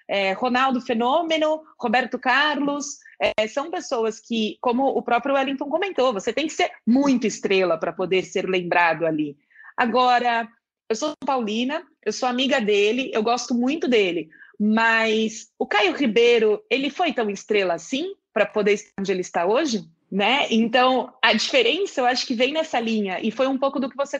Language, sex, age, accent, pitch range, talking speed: Portuguese, female, 30-49, Brazilian, 215-285 Hz, 170 wpm